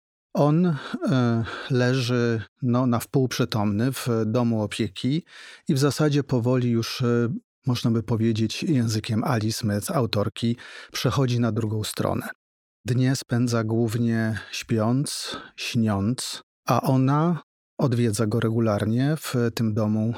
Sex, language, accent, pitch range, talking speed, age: male, Polish, native, 110-125 Hz, 115 wpm, 40-59